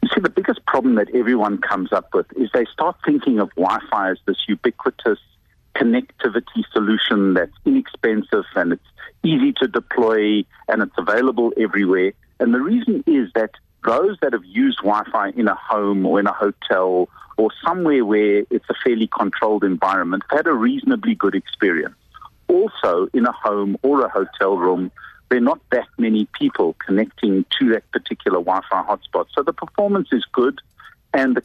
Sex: male